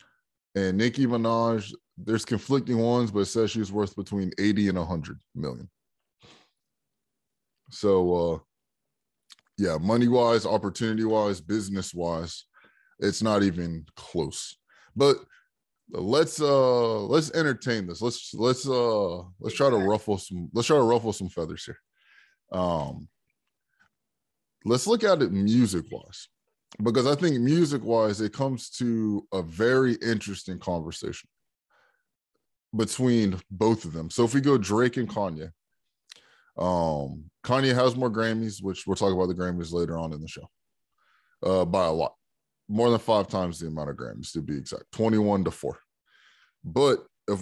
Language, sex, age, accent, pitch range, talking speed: English, male, 20-39, American, 90-120 Hz, 140 wpm